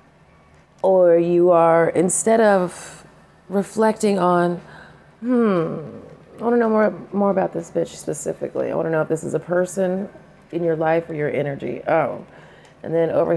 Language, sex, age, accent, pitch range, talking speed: English, female, 30-49, American, 150-180 Hz, 165 wpm